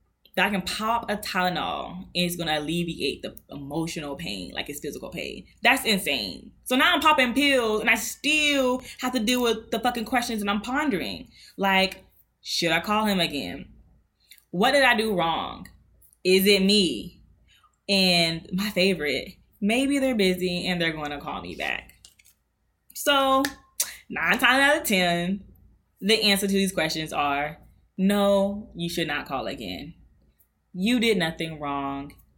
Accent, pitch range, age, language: American, 180-255 Hz, 20-39, English